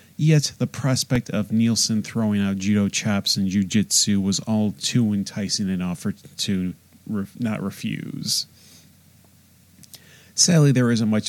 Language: English